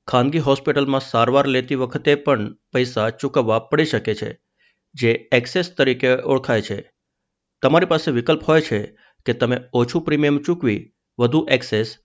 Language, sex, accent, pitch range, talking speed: Gujarati, male, native, 115-145 Hz, 140 wpm